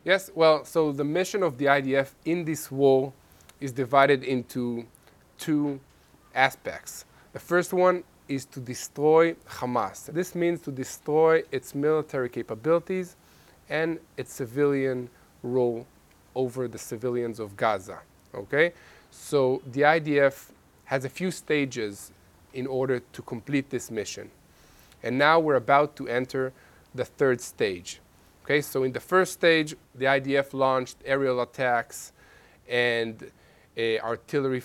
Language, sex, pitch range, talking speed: English, male, 120-145 Hz, 130 wpm